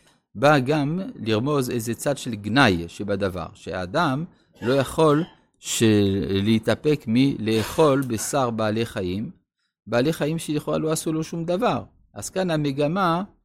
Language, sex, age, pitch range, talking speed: Hebrew, male, 50-69, 110-160 Hz, 125 wpm